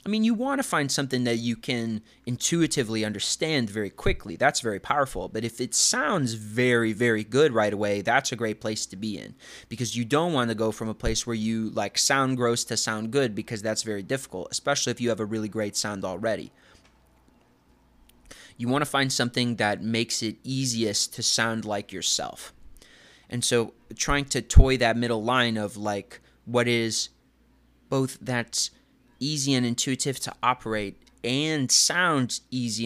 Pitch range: 110-135 Hz